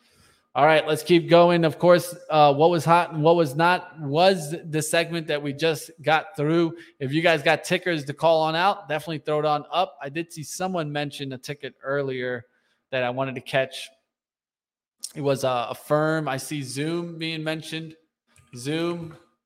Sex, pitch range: male, 140-165 Hz